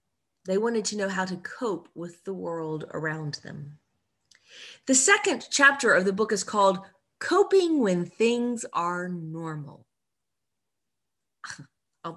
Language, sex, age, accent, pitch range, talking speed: English, female, 30-49, American, 165-245 Hz, 130 wpm